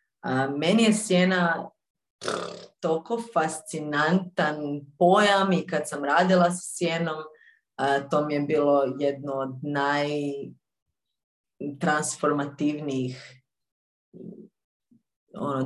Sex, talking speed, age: female, 75 wpm, 30-49